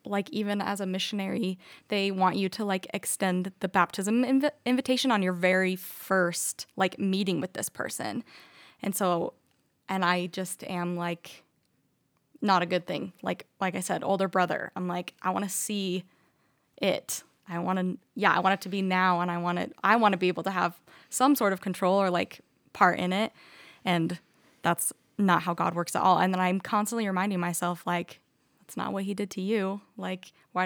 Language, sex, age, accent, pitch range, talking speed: English, female, 20-39, American, 180-205 Hz, 195 wpm